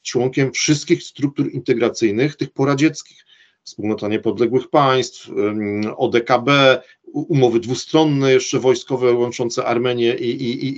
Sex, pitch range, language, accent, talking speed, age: male, 120-170 Hz, Polish, native, 105 wpm, 40-59